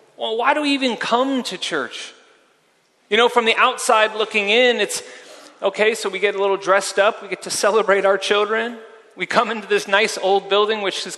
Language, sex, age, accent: English, male, 30-49, American